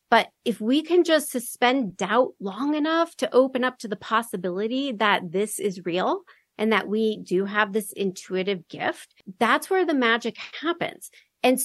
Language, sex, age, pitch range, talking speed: English, female, 40-59, 210-265 Hz, 170 wpm